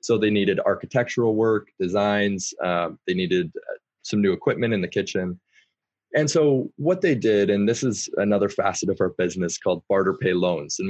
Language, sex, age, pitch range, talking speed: English, male, 20-39, 95-120 Hz, 180 wpm